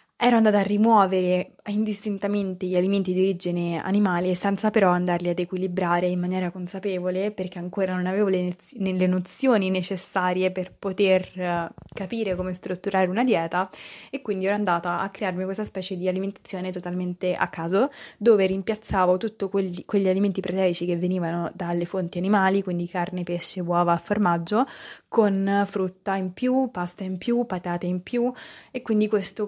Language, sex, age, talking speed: Italian, female, 20-39, 155 wpm